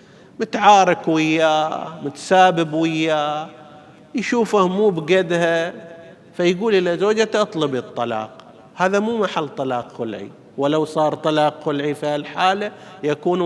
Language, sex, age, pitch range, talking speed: Arabic, male, 50-69, 145-200 Hz, 105 wpm